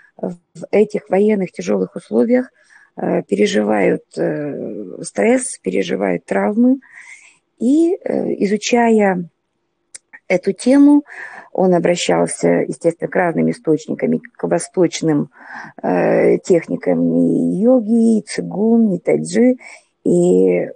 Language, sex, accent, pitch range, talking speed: Russian, female, native, 155-245 Hz, 85 wpm